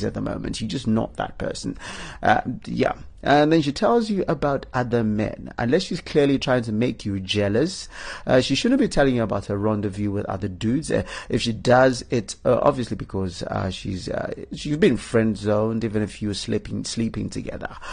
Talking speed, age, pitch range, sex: 200 wpm, 30-49, 105-135 Hz, male